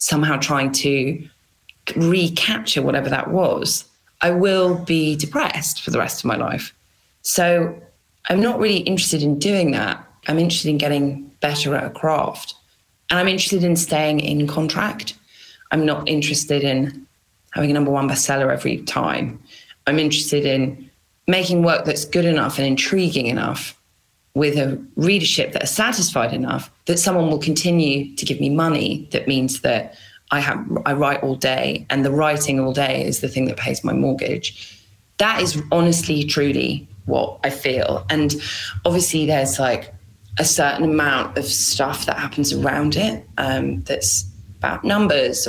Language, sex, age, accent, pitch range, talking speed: English, female, 20-39, British, 135-170 Hz, 160 wpm